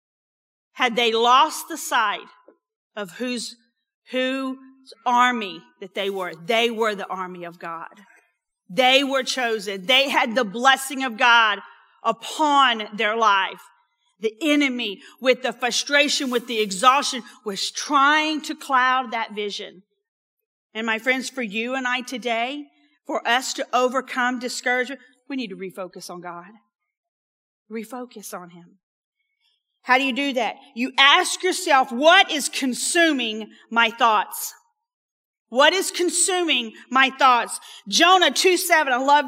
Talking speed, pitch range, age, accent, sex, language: 135 wpm, 215-290 Hz, 40-59, American, female, English